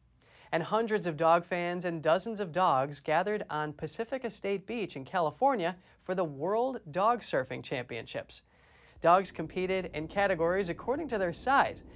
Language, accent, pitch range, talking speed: English, American, 160-205 Hz, 150 wpm